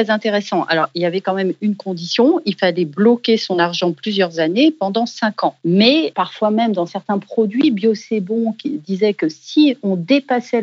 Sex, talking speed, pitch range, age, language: female, 190 wpm, 175-230 Hz, 40-59, French